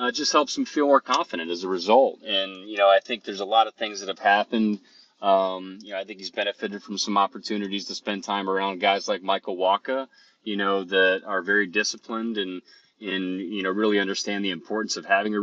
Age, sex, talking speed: 30-49, male, 225 wpm